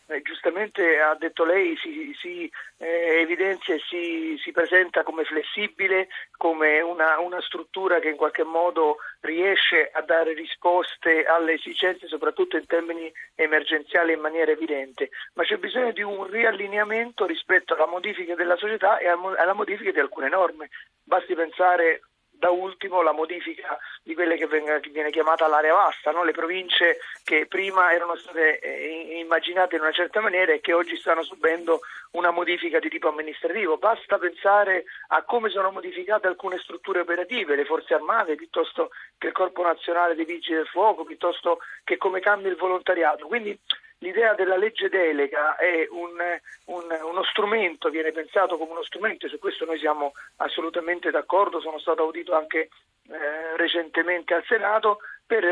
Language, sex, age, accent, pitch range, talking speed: Italian, male, 40-59, native, 165-210 Hz, 155 wpm